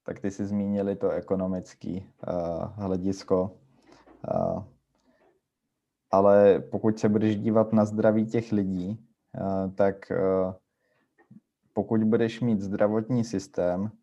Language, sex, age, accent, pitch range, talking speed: Czech, male, 20-39, native, 95-110 Hz, 95 wpm